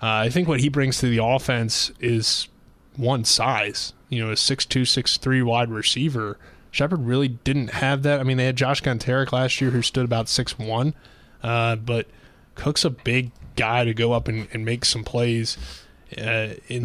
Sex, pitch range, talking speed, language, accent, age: male, 115-130 Hz, 180 wpm, English, American, 20-39